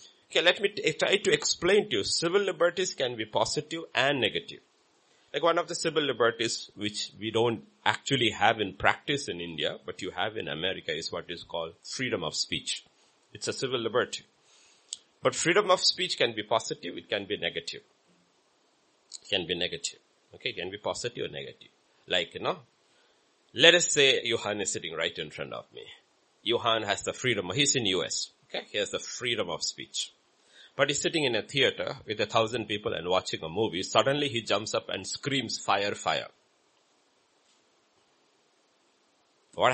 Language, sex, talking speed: English, male, 180 wpm